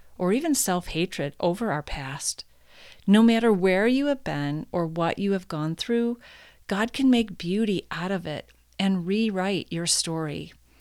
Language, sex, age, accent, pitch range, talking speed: English, female, 40-59, American, 165-195 Hz, 160 wpm